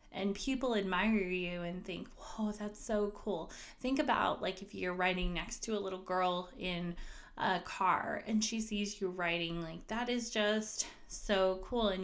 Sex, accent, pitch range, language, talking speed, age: female, American, 175-210 Hz, English, 180 wpm, 20-39